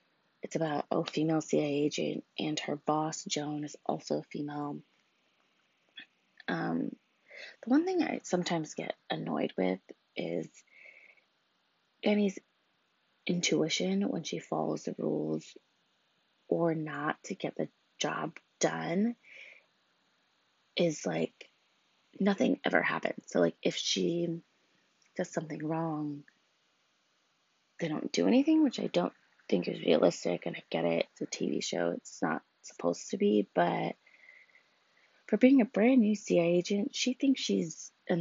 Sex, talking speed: female, 130 wpm